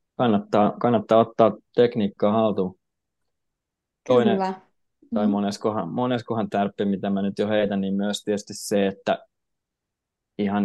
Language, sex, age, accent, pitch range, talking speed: Finnish, male, 20-39, native, 100-110 Hz, 120 wpm